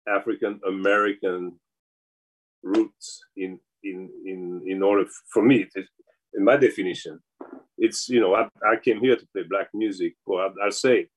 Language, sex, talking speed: English, male, 145 wpm